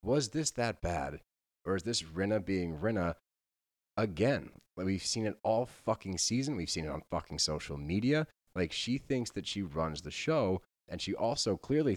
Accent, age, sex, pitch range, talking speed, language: American, 30-49, male, 90-125 Hz, 180 wpm, English